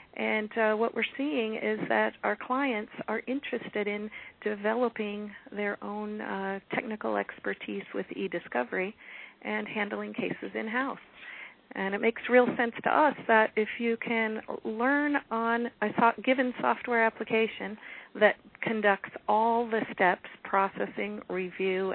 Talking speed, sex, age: 135 wpm, female, 40-59